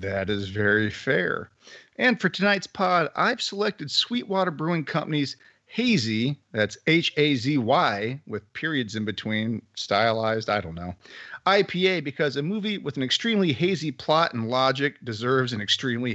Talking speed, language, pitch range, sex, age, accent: 140 wpm, English, 125-185 Hz, male, 40-59, American